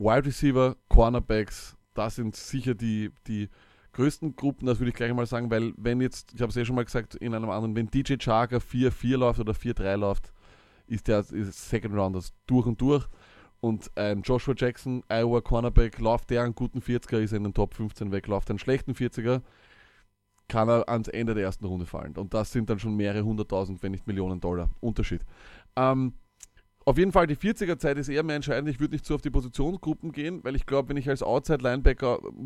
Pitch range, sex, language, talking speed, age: 110-135 Hz, male, German, 205 wpm, 20-39